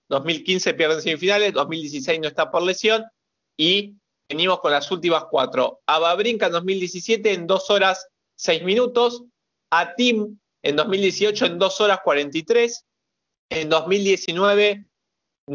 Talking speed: 125 wpm